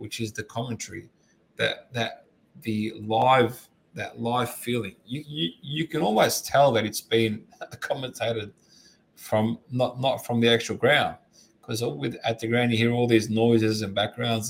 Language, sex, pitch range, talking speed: English, male, 110-135 Hz, 160 wpm